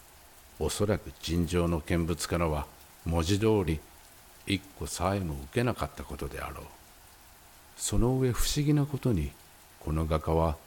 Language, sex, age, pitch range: Japanese, male, 50-69, 80-100 Hz